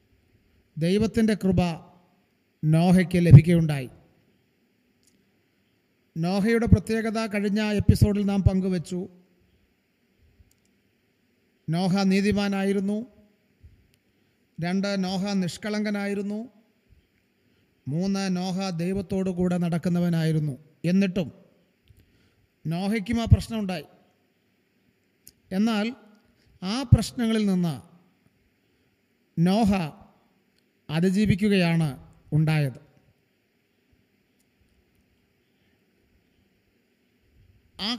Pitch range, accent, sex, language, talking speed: 165-215 Hz, native, male, Malayalam, 50 wpm